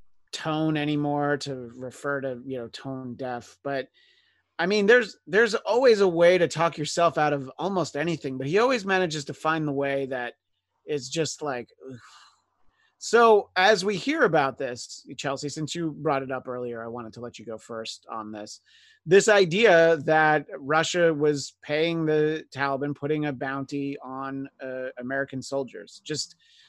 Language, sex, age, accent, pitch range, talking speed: English, male, 30-49, American, 135-170 Hz, 165 wpm